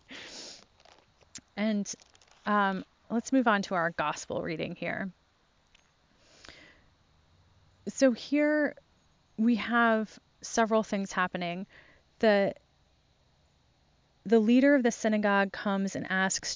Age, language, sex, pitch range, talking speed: 30-49, English, female, 165-205 Hz, 95 wpm